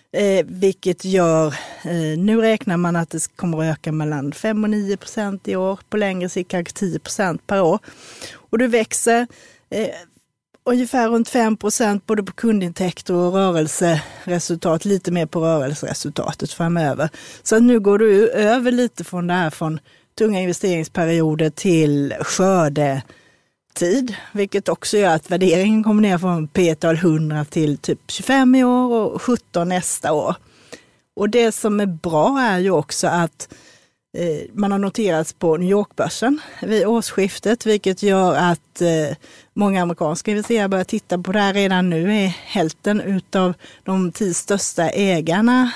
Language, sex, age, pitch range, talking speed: Swedish, female, 30-49, 165-210 Hz, 155 wpm